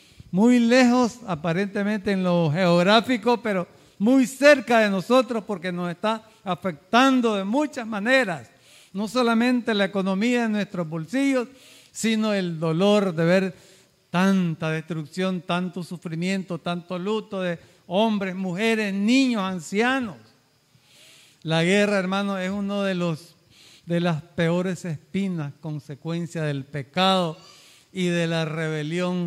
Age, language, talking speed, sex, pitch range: 50-69, Spanish, 120 wpm, male, 150-205 Hz